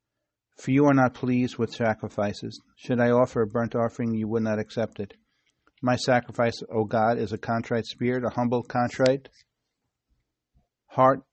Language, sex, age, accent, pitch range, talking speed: English, male, 50-69, American, 110-125 Hz, 160 wpm